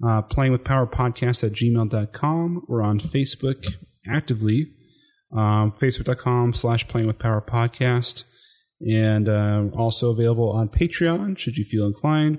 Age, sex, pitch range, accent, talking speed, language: 30-49, male, 105-130 Hz, American, 125 wpm, English